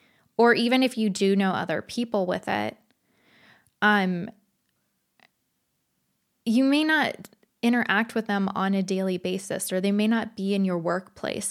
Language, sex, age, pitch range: English, female, 20-39, 195-230 Hz